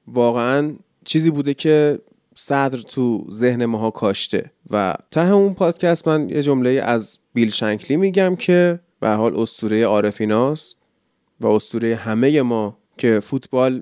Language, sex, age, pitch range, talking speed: Persian, male, 30-49, 120-175 Hz, 135 wpm